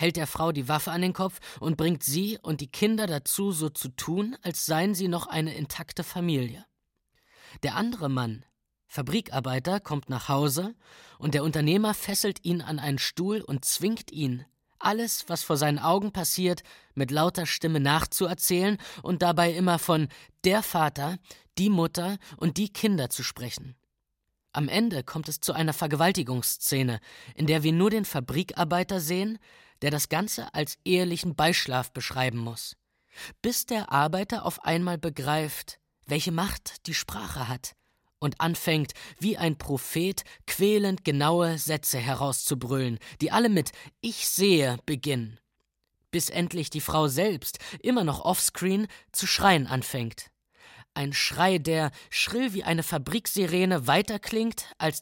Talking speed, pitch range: 145 wpm, 145-185 Hz